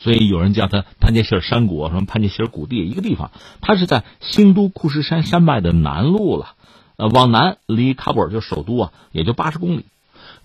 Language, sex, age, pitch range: Chinese, male, 50-69, 105-165 Hz